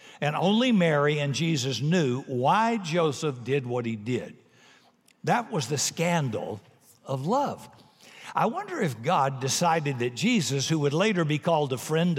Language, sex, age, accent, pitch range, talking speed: English, male, 60-79, American, 125-160 Hz, 160 wpm